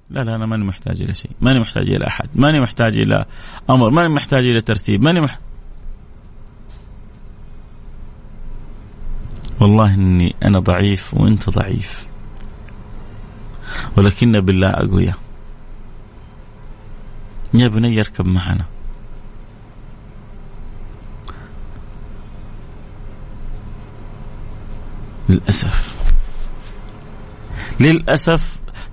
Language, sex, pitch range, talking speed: Arabic, male, 105-130 Hz, 75 wpm